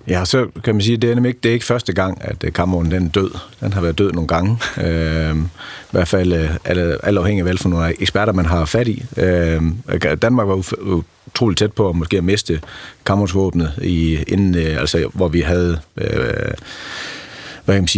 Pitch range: 80-100 Hz